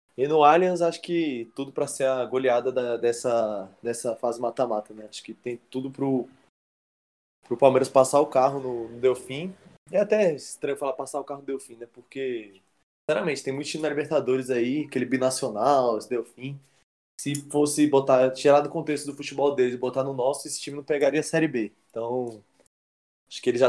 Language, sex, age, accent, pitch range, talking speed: Portuguese, male, 20-39, Brazilian, 125-155 Hz, 195 wpm